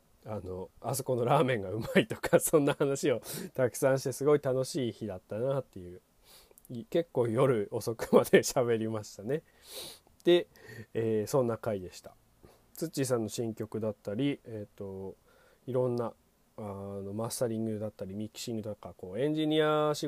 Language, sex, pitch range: Japanese, male, 105-155 Hz